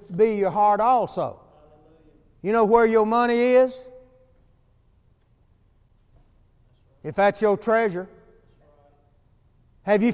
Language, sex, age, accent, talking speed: English, male, 60-79, American, 95 wpm